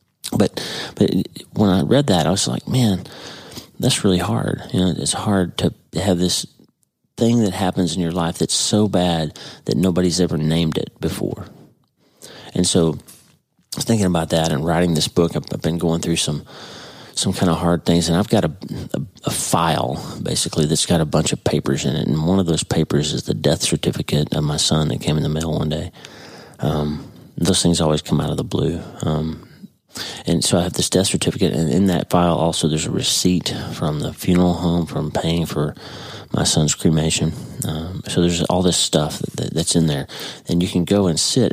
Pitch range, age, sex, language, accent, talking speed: 80-90 Hz, 40-59, male, English, American, 200 wpm